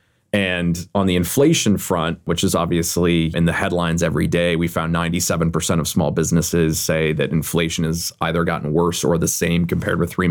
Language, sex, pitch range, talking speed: English, male, 80-100 Hz, 185 wpm